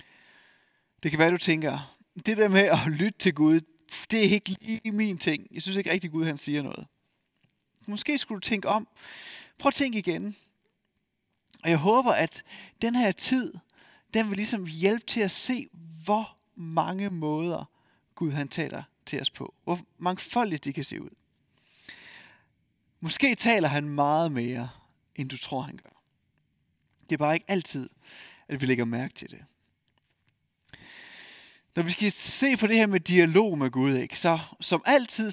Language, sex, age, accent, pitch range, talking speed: Danish, male, 30-49, native, 155-215 Hz, 170 wpm